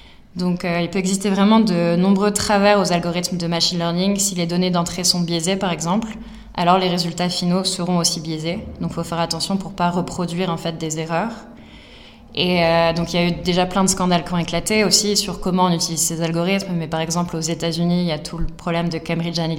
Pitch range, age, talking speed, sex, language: 170-190 Hz, 20-39, 235 wpm, female, French